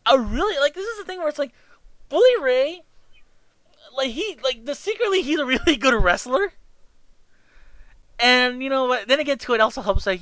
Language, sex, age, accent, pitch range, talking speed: English, male, 20-39, American, 150-220 Hz, 200 wpm